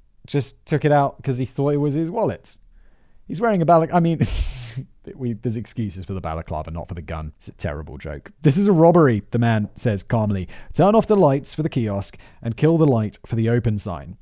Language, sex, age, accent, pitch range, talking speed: English, male, 30-49, British, 100-155 Hz, 230 wpm